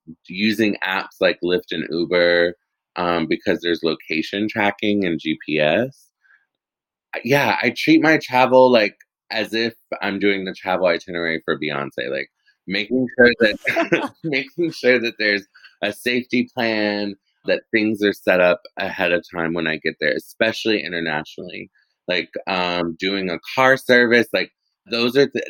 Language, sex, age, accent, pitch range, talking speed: English, male, 20-39, American, 85-110 Hz, 150 wpm